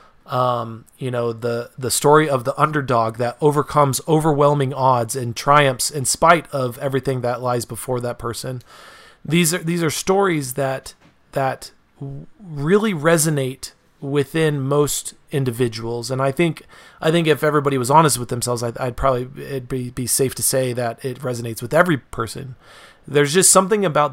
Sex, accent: male, American